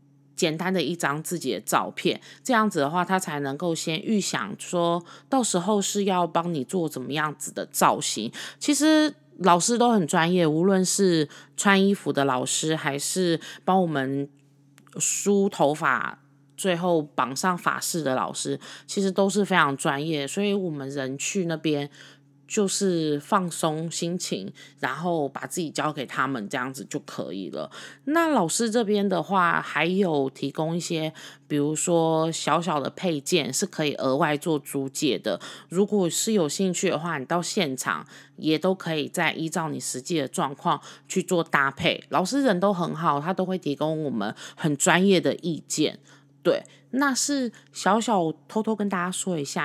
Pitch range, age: 145-190 Hz, 20-39